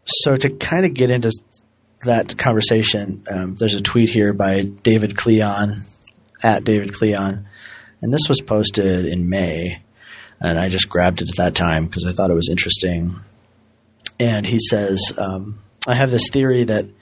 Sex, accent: male, American